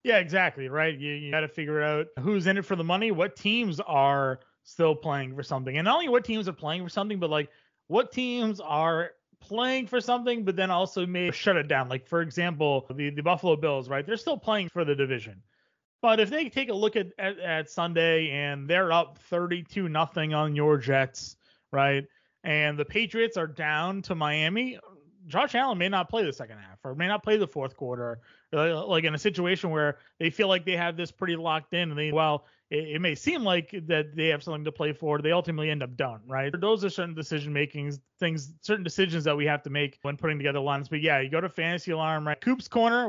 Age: 30-49